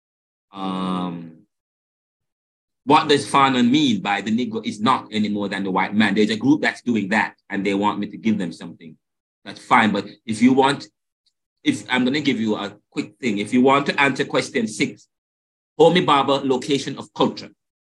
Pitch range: 95-130 Hz